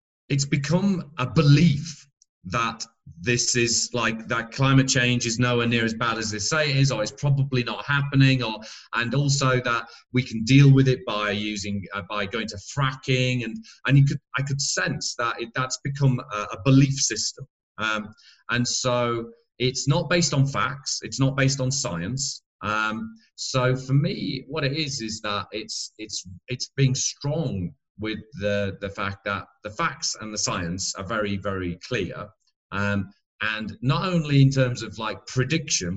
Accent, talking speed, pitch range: British, 180 wpm, 105-140 Hz